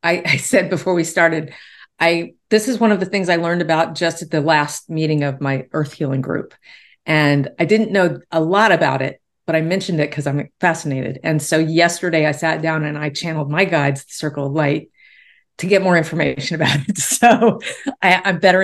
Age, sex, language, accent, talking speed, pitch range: 40-59, female, English, American, 215 wpm, 145-175 Hz